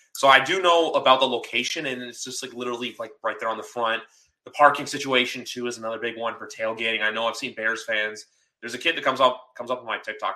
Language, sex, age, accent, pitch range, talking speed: English, male, 20-39, American, 110-130 Hz, 260 wpm